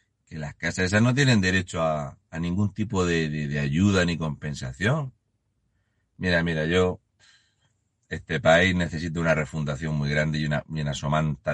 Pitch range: 80-105 Hz